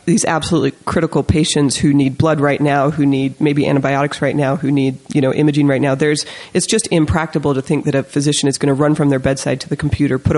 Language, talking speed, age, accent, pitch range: English, 245 wpm, 30-49, American, 140-160 Hz